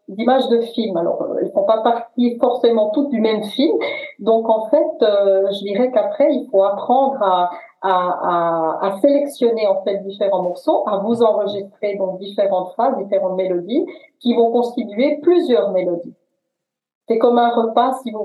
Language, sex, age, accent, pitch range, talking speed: English, female, 40-59, French, 190-255 Hz, 170 wpm